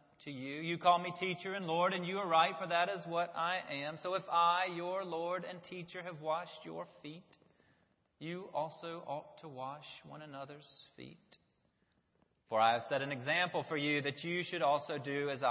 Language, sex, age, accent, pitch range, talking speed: English, male, 30-49, American, 140-190 Hz, 195 wpm